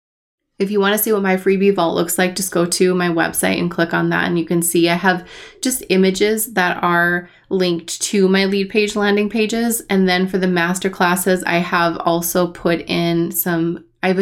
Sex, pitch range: female, 170-195 Hz